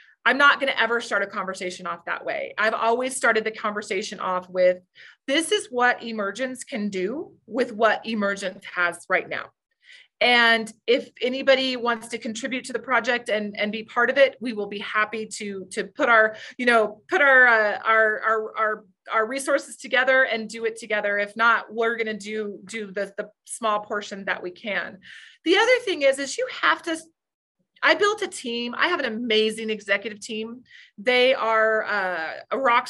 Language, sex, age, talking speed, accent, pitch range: English, female, 30-49, 190 wpm, American, 210-250 Hz